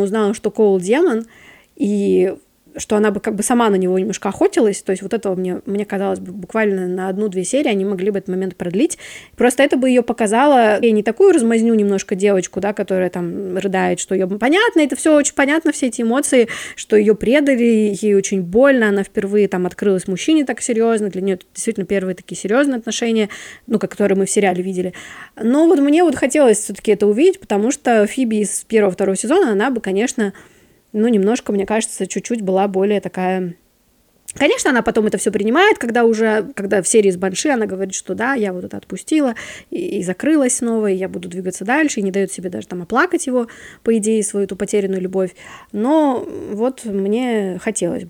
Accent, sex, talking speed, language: native, female, 200 wpm, Russian